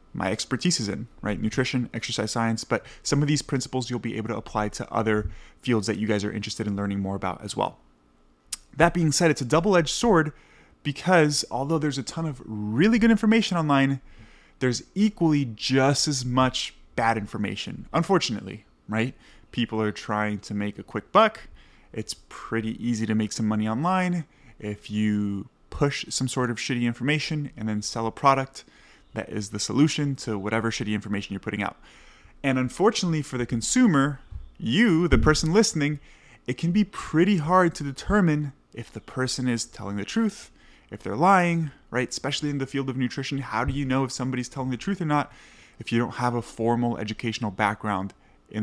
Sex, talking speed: male, 185 wpm